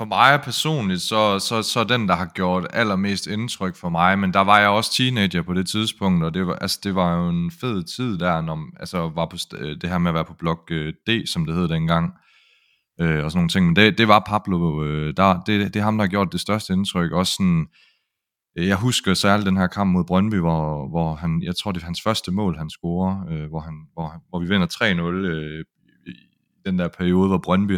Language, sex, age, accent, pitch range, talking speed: Danish, male, 30-49, native, 85-105 Hz, 245 wpm